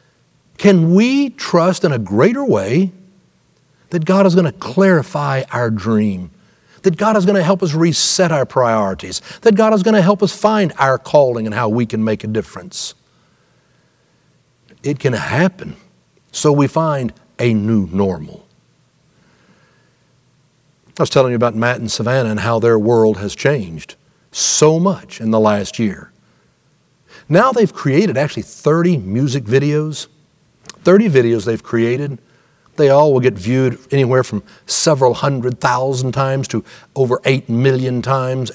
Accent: American